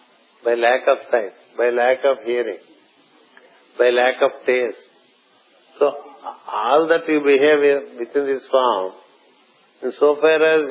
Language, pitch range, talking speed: English, 125-150 Hz, 135 wpm